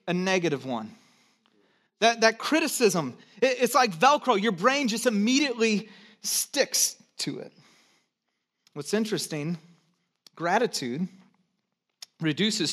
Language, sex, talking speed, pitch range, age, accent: English, male, 100 wpm, 165-225 Hz, 30-49, American